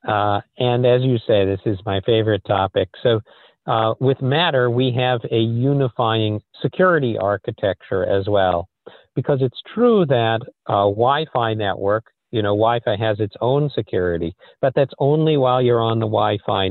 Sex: male